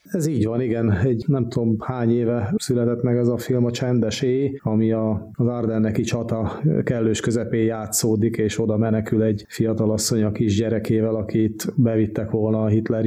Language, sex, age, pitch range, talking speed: Hungarian, male, 30-49, 105-120 Hz, 175 wpm